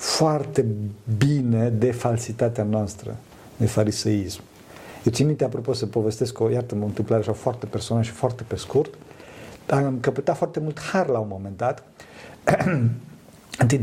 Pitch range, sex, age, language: 110-140 Hz, male, 50-69, Romanian